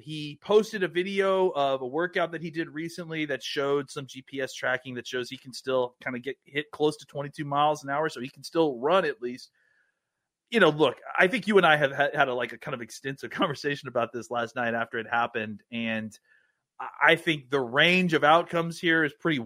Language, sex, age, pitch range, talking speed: English, male, 30-49, 120-155 Hz, 220 wpm